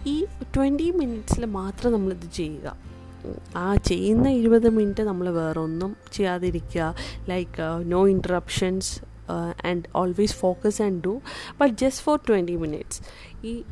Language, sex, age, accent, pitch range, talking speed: Malayalam, female, 20-39, native, 175-220 Hz, 120 wpm